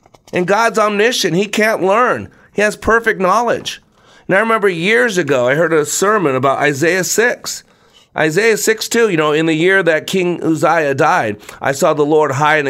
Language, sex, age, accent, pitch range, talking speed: English, male, 40-59, American, 155-205 Hz, 190 wpm